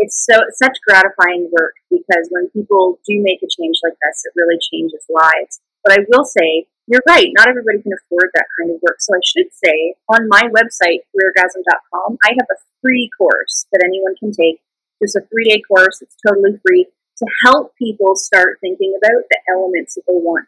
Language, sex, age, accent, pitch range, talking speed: English, female, 30-49, American, 185-250 Hz, 200 wpm